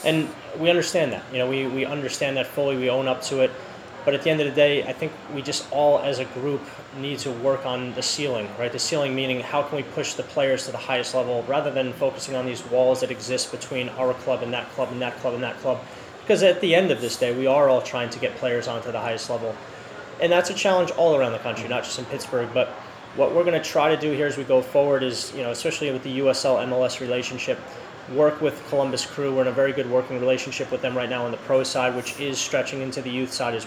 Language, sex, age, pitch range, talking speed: English, male, 20-39, 125-145 Hz, 265 wpm